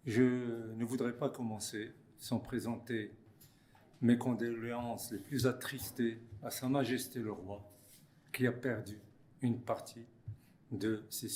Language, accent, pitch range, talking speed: French, French, 105-130 Hz, 125 wpm